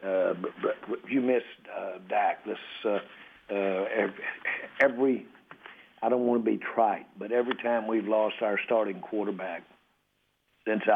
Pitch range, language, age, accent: 100-115 Hz, English, 60-79, American